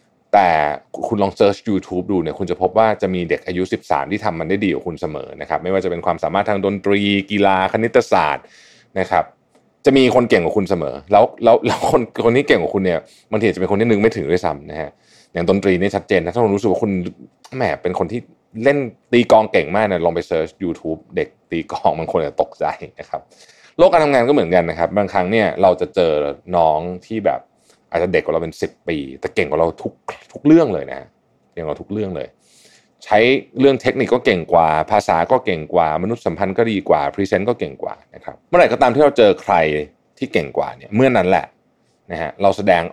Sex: male